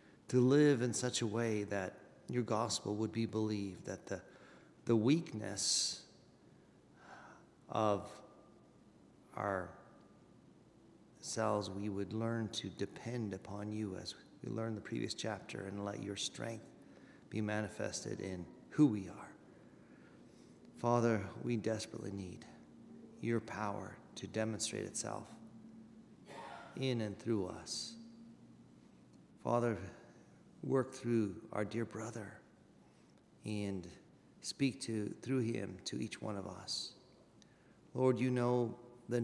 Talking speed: 115 wpm